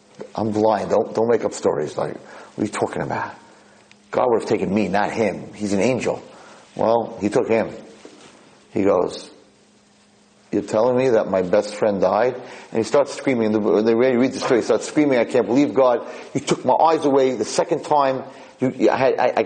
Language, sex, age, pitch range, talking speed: English, male, 40-59, 110-150 Hz, 190 wpm